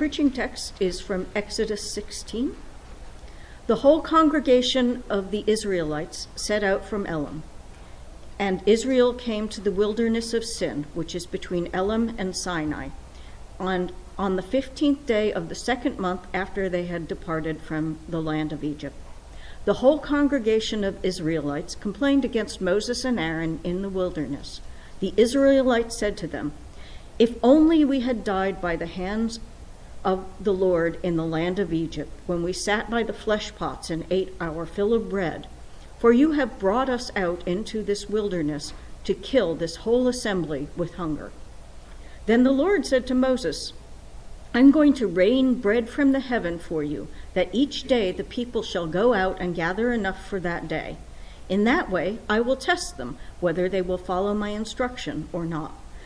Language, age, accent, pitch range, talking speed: English, 60-79, American, 165-235 Hz, 170 wpm